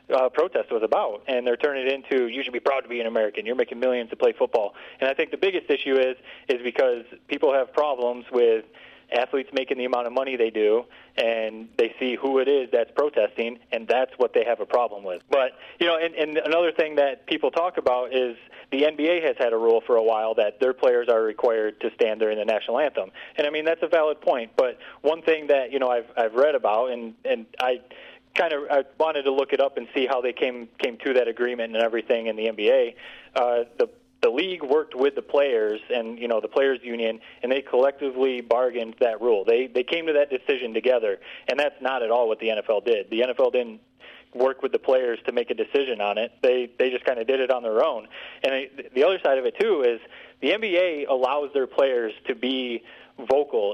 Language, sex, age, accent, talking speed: English, male, 30-49, American, 235 wpm